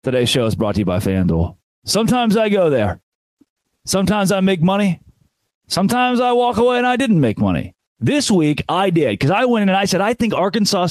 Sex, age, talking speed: male, 30-49, 215 wpm